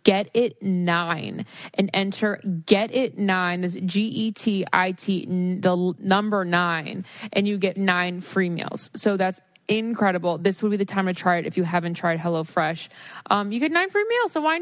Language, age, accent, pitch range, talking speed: English, 20-39, American, 185-225 Hz, 170 wpm